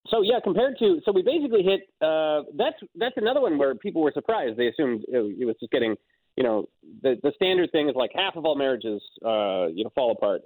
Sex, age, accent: male, 30-49, American